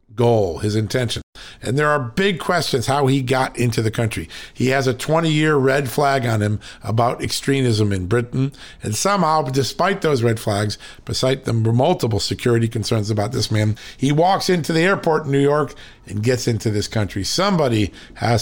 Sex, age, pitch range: male, 50-69, 105-135 Hz